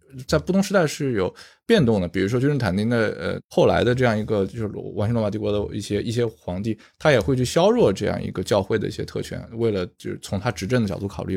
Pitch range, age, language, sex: 105-165 Hz, 20-39, Chinese, male